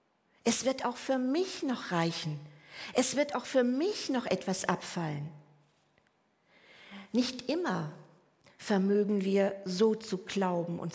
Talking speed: 125 wpm